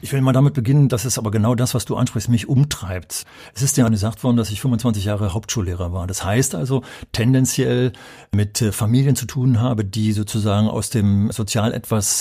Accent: German